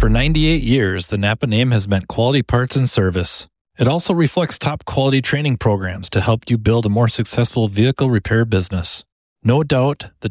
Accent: American